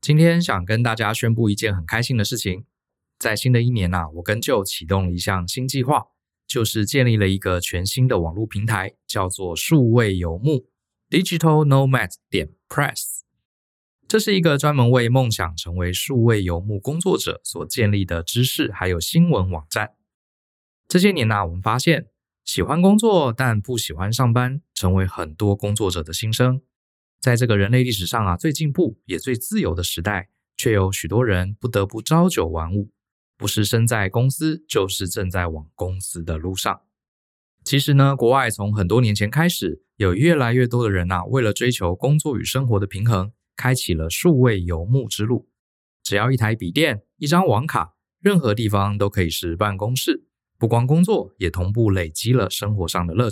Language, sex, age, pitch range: Chinese, male, 20-39, 95-125 Hz